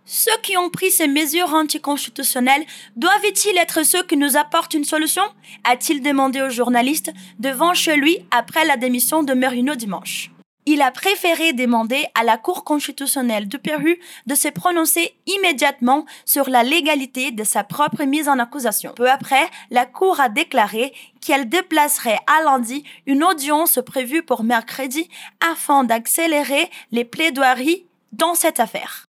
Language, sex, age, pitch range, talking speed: Portuguese, female, 20-39, 250-330 Hz, 155 wpm